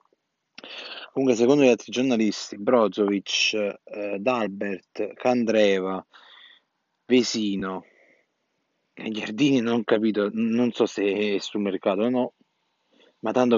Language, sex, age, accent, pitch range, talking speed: Italian, male, 20-39, native, 105-130 Hz, 105 wpm